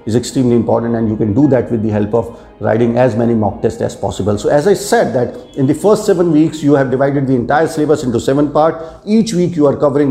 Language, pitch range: Hindi, 125-150 Hz